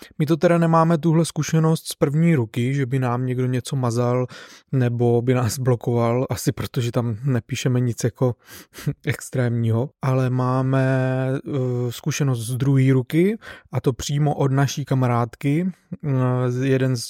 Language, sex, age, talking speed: Czech, male, 20-39, 145 wpm